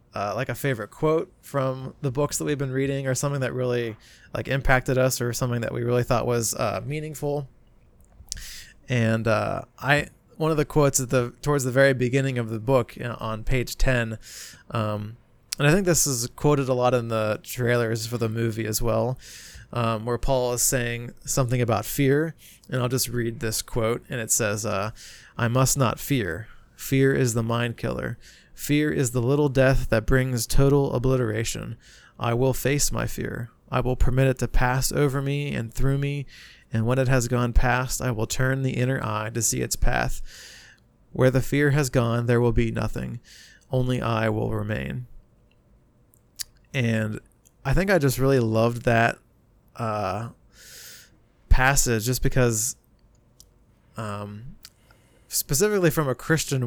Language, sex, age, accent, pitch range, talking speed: English, male, 20-39, American, 115-135 Hz, 170 wpm